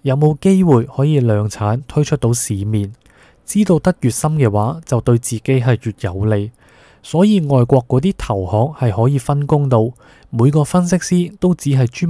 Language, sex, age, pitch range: Chinese, male, 20-39, 110-140 Hz